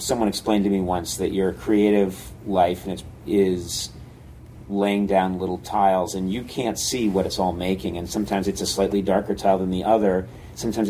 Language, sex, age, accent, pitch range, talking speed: English, male, 40-59, American, 100-125 Hz, 180 wpm